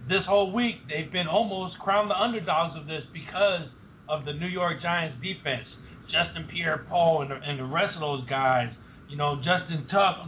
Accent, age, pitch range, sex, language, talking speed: American, 40-59, 130-170 Hz, male, English, 175 wpm